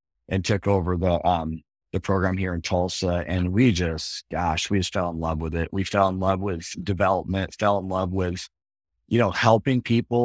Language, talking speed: English, 205 wpm